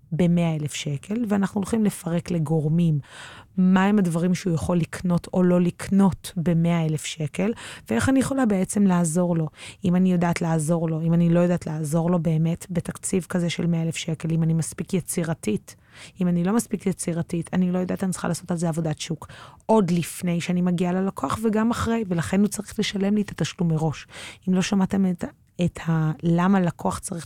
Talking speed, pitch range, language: 170 wpm, 160-185 Hz, Hebrew